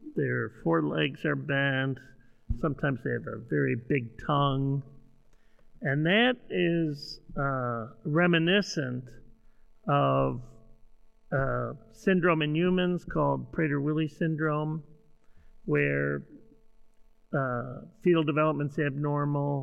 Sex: male